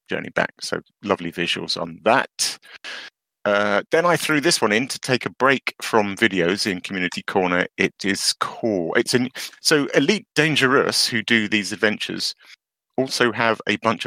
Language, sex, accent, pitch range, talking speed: English, male, British, 90-115 Hz, 165 wpm